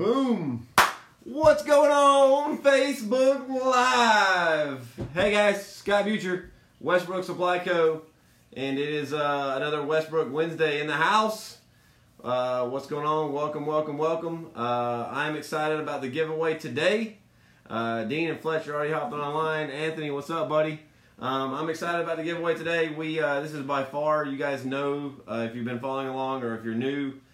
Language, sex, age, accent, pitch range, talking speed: English, male, 30-49, American, 115-155 Hz, 165 wpm